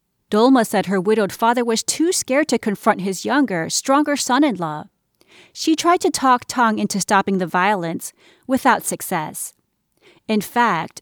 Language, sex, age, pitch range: English, female, 30-49, 195-275 Hz